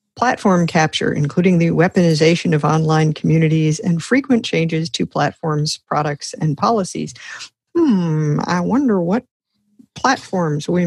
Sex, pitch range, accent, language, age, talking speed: female, 160-210 Hz, American, English, 50-69, 120 wpm